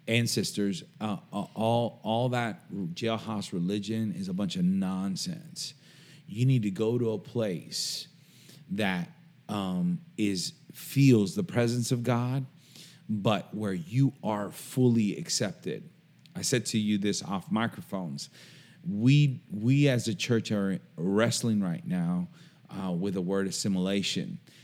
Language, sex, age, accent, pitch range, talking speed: English, male, 30-49, American, 110-165 Hz, 135 wpm